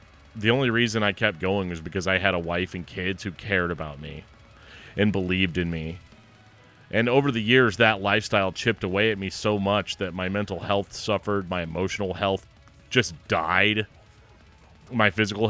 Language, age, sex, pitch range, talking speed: English, 30-49, male, 90-110 Hz, 180 wpm